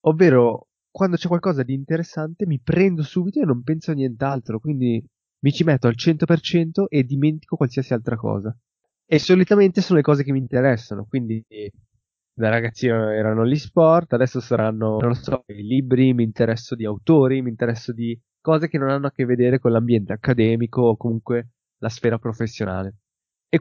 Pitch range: 115-155 Hz